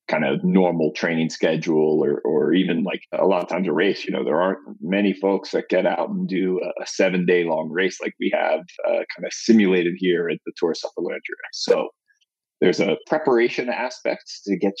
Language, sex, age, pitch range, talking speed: English, male, 40-59, 95-125 Hz, 205 wpm